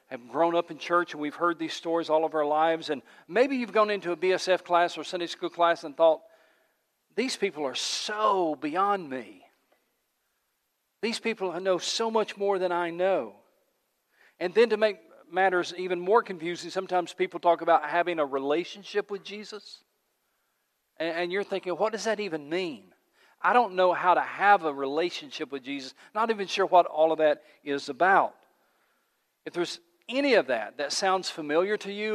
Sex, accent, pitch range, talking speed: male, American, 160-205 Hz, 180 wpm